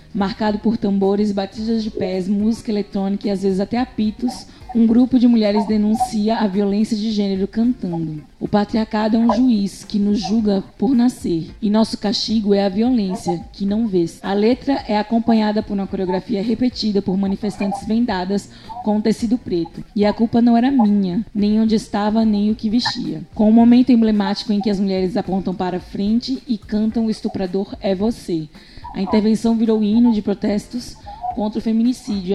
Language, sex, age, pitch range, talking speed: Portuguese, female, 20-39, 195-225 Hz, 175 wpm